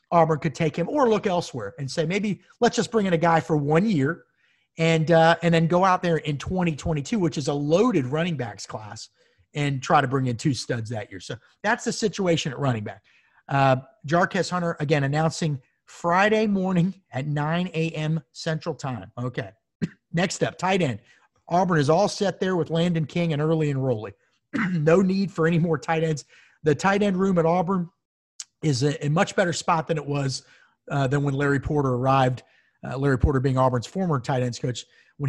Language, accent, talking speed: English, American, 200 wpm